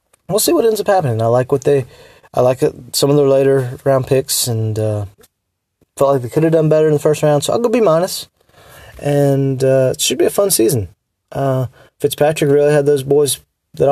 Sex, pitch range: male, 120-145 Hz